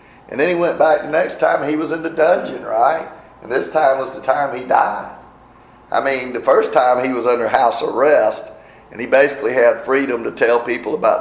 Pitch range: 115-135 Hz